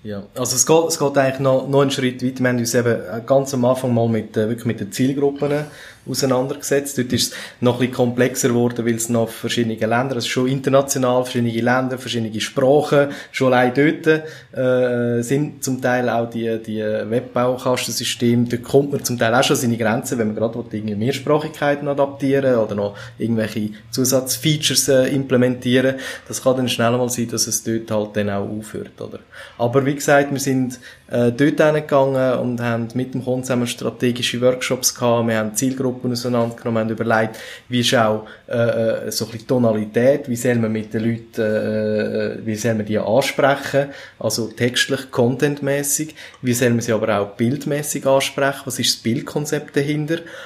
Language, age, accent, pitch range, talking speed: German, 20-39, Austrian, 115-135 Hz, 175 wpm